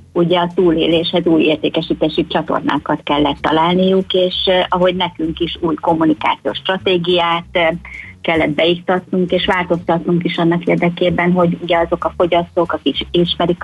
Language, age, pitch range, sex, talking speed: Hungarian, 30-49, 160-180 Hz, female, 130 wpm